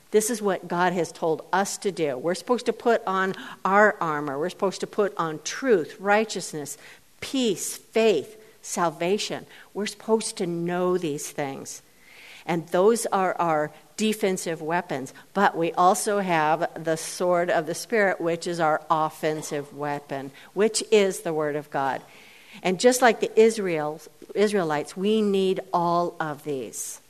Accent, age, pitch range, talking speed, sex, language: American, 50-69, 160-210 Hz, 150 wpm, female, English